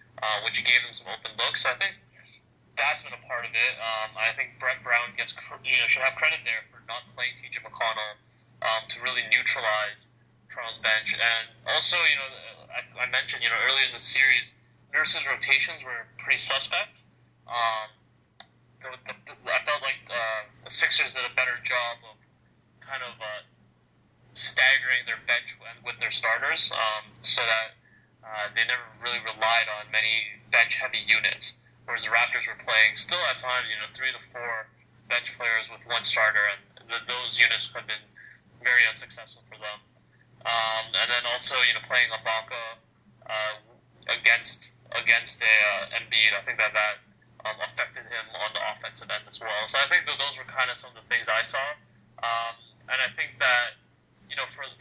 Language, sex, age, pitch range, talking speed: English, male, 20-39, 110-120 Hz, 180 wpm